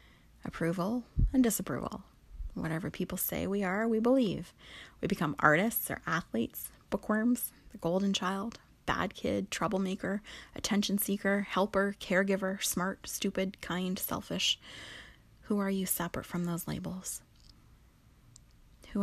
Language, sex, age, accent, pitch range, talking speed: English, female, 30-49, American, 170-190 Hz, 120 wpm